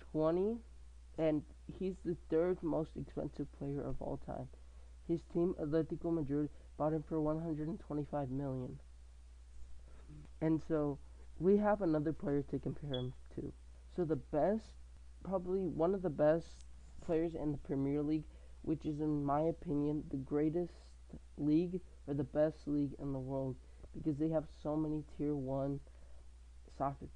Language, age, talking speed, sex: English, 20-39, 145 wpm, male